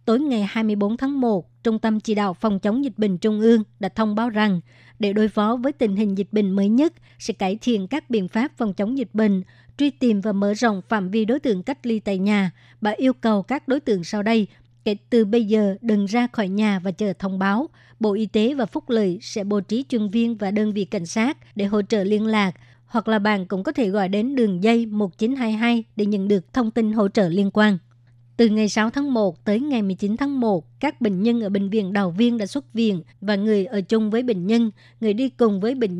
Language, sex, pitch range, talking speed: Vietnamese, male, 200-230 Hz, 245 wpm